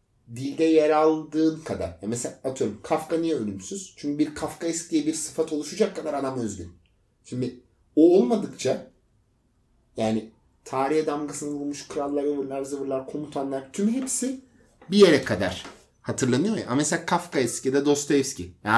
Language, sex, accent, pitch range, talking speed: Turkish, male, native, 115-155 Hz, 150 wpm